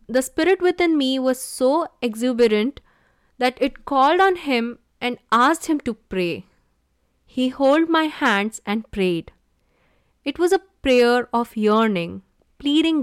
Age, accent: 20-39, Indian